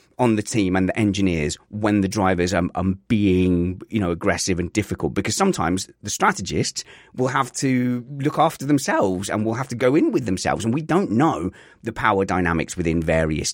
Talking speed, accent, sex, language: 195 wpm, British, male, English